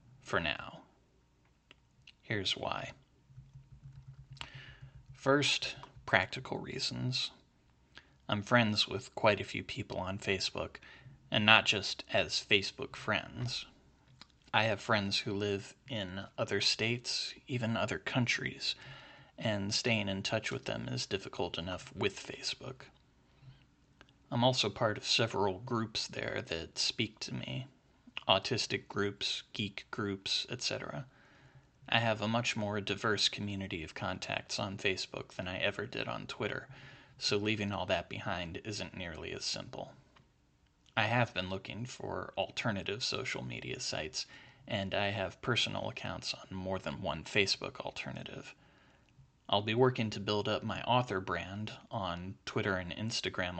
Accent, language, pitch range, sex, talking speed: American, English, 95-130 Hz, male, 135 wpm